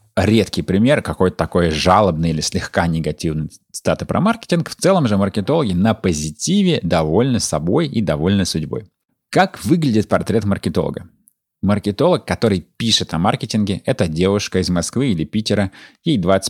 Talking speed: 140 wpm